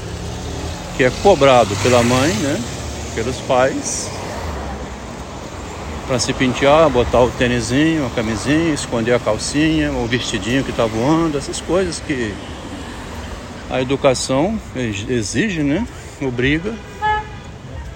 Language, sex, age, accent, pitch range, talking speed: Portuguese, male, 60-79, Brazilian, 90-150 Hz, 105 wpm